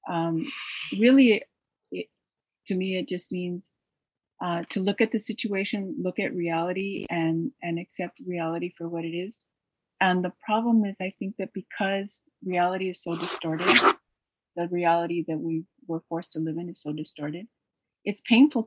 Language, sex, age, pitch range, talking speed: English, female, 30-49, 170-205 Hz, 165 wpm